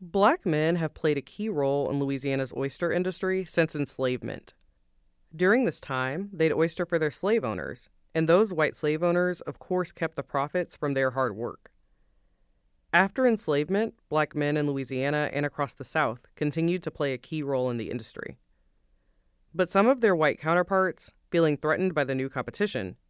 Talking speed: 175 wpm